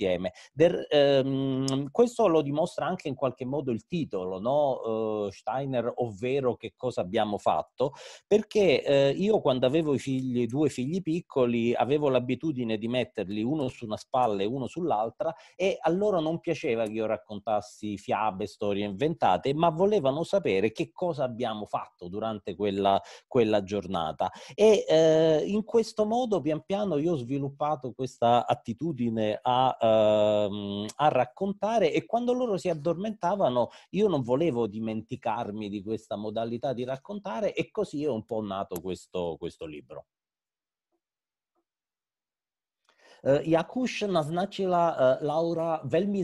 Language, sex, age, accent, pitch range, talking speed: Italian, male, 40-59, native, 115-165 Hz, 135 wpm